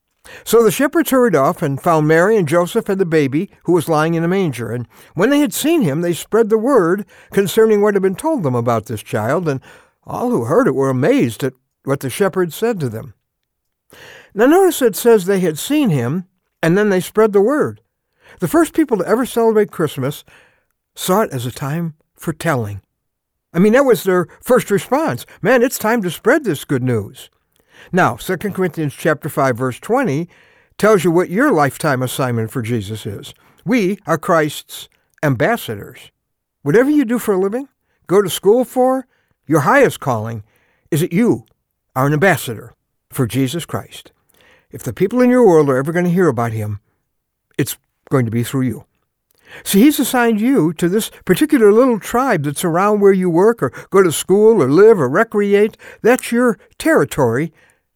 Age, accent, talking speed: 60-79, American, 190 wpm